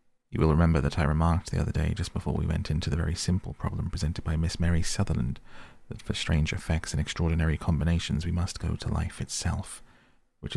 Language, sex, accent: English, male, British